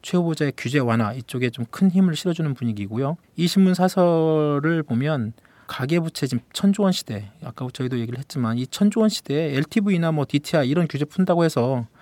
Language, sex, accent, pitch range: Korean, male, native, 125-165 Hz